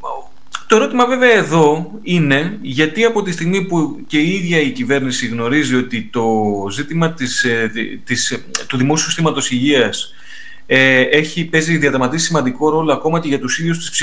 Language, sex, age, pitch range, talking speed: Greek, male, 30-49, 125-180 Hz, 155 wpm